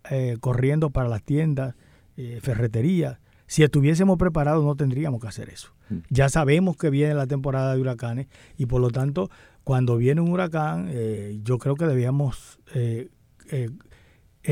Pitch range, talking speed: 125-160 Hz, 155 wpm